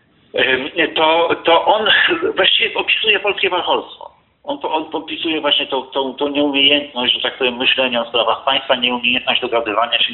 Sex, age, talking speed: male, 50-69, 155 wpm